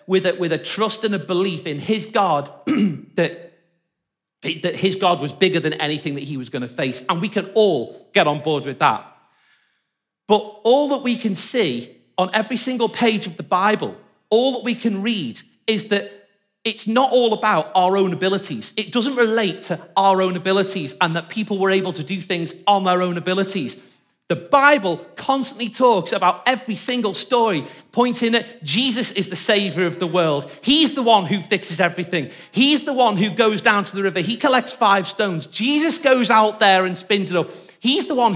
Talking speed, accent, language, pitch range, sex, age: 195 wpm, British, English, 180-240 Hz, male, 40-59